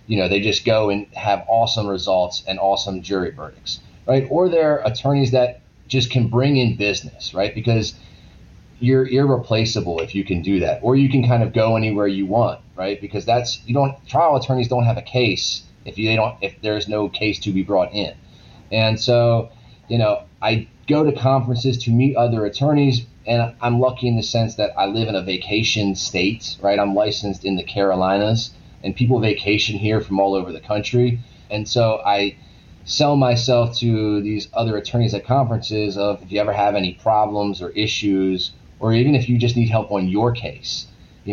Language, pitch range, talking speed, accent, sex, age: English, 100-120 Hz, 195 wpm, American, male, 30-49